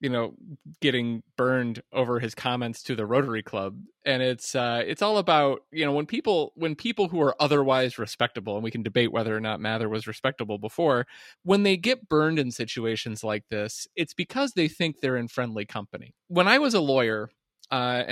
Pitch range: 120-155 Hz